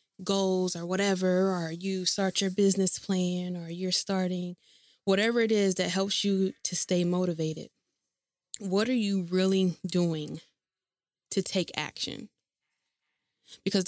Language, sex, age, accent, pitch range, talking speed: English, female, 20-39, American, 160-190 Hz, 130 wpm